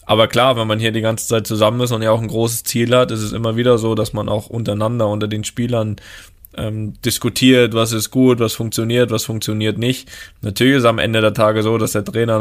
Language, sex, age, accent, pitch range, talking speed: German, male, 20-39, German, 105-120 Hz, 235 wpm